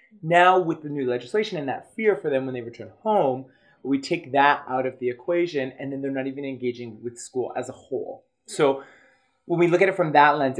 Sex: male